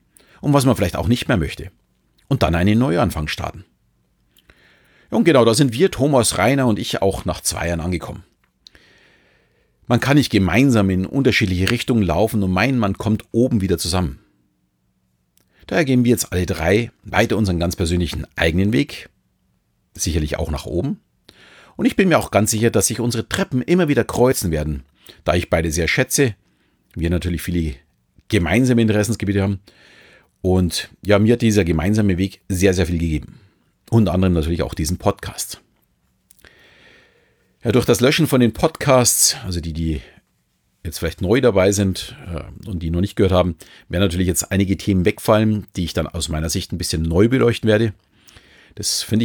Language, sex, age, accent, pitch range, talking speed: German, male, 40-59, German, 85-115 Hz, 170 wpm